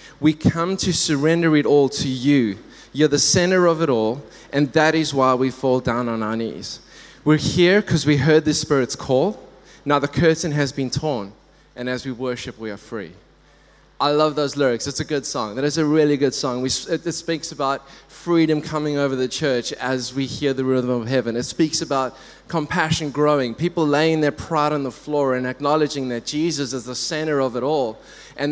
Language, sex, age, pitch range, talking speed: English, male, 20-39, 130-155 Hz, 205 wpm